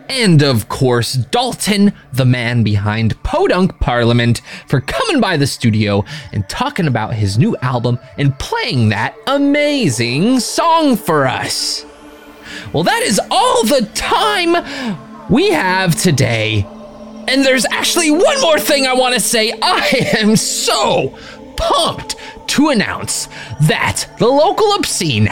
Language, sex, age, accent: English, male, 20-39, American